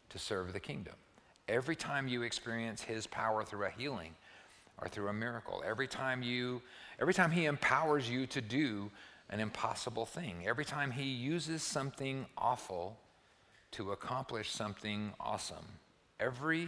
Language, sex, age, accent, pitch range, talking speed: English, male, 50-69, American, 100-130 Hz, 150 wpm